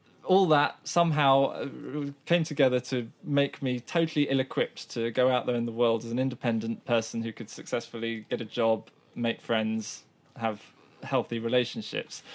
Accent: British